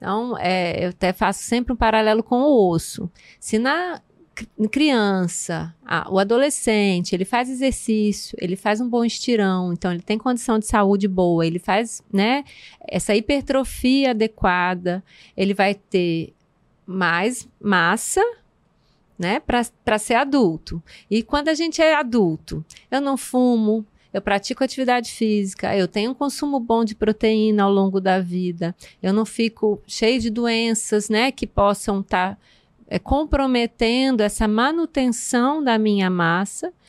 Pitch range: 195-245 Hz